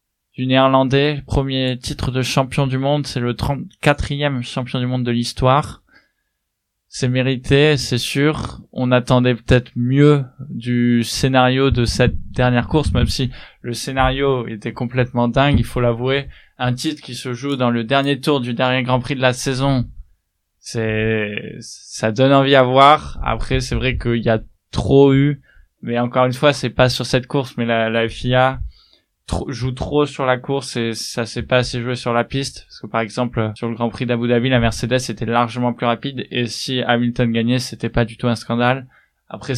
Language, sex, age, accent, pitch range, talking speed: French, male, 20-39, French, 120-135 Hz, 190 wpm